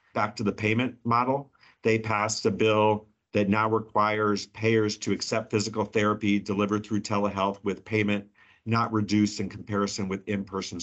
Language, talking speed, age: English, 155 wpm, 50-69